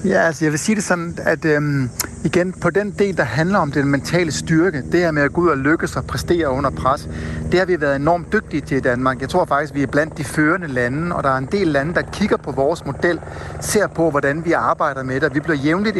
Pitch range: 140-175 Hz